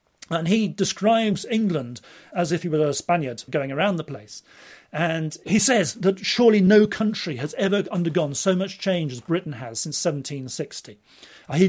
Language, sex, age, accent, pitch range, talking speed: English, male, 40-59, British, 145-190 Hz, 165 wpm